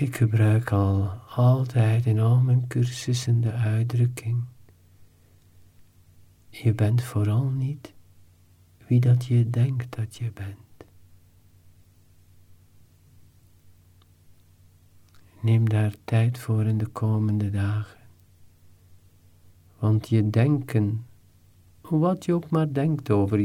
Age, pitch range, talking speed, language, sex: 50-69, 90-125 Hz, 95 wpm, Dutch, male